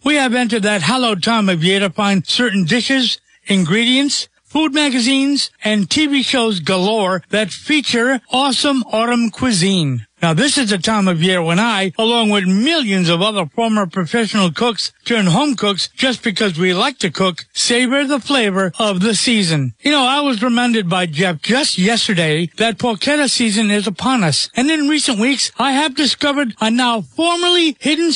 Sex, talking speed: male, 175 wpm